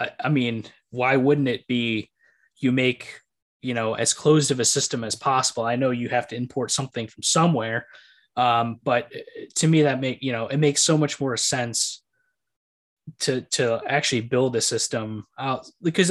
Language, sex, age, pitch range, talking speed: English, male, 20-39, 115-140 Hz, 180 wpm